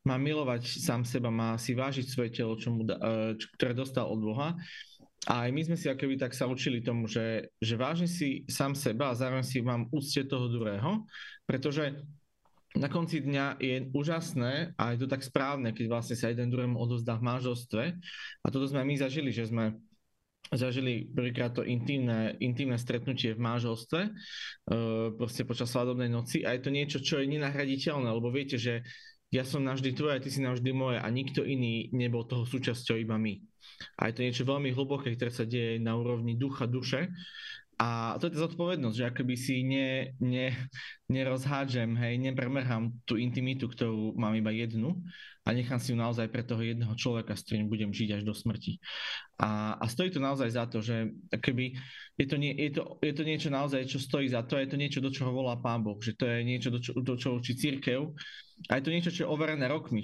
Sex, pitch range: male, 115-140 Hz